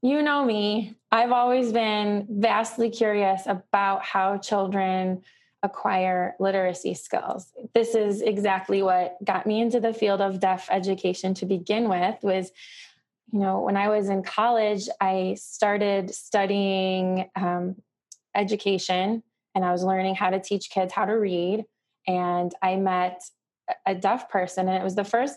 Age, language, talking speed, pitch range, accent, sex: 20-39, English, 150 wpm, 190-230 Hz, American, female